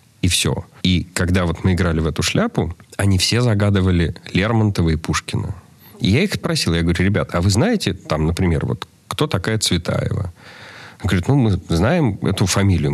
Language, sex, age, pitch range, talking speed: Russian, male, 40-59, 85-115 Hz, 180 wpm